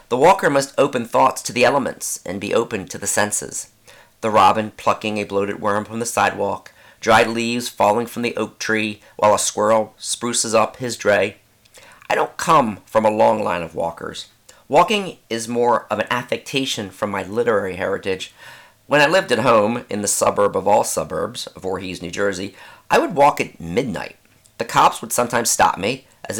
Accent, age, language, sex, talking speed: American, 40-59, English, male, 185 wpm